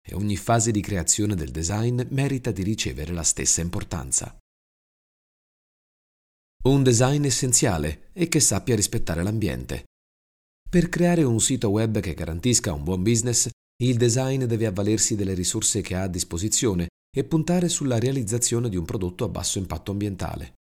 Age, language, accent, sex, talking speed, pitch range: 40-59, Italian, native, male, 150 wpm, 85-120 Hz